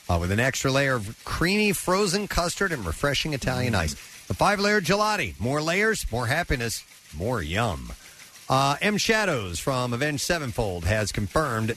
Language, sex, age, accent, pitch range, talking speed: English, male, 50-69, American, 100-155 Hz, 155 wpm